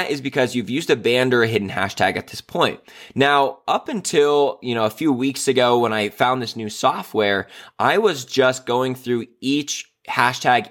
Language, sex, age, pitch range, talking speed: English, male, 20-39, 110-135 Hz, 195 wpm